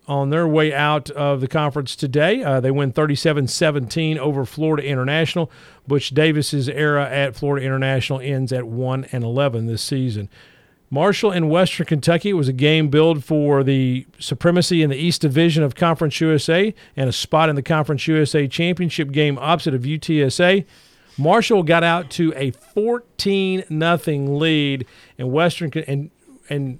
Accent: American